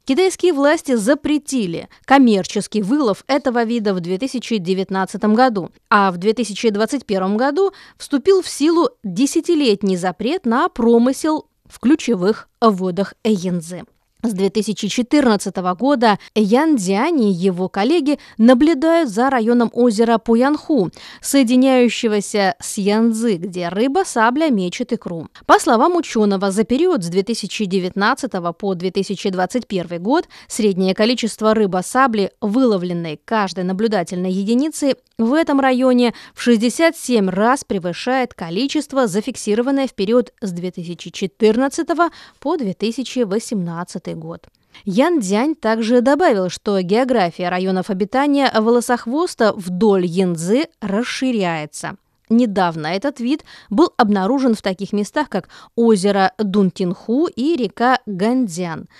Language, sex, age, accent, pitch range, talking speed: Russian, female, 20-39, native, 195-260 Hz, 105 wpm